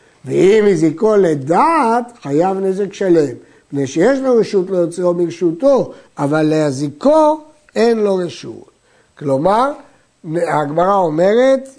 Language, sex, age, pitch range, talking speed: Hebrew, male, 60-79, 165-240 Hz, 100 wpm